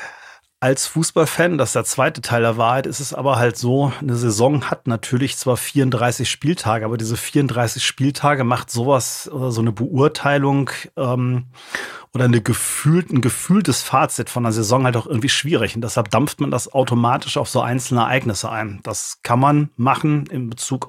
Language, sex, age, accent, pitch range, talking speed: German, male, 30-49, German, 115-140 Hz, 175 wpm